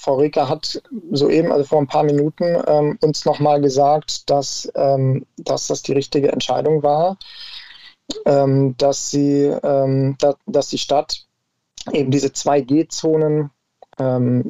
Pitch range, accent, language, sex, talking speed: 130-150 Hz, German, German, male, 135 wpm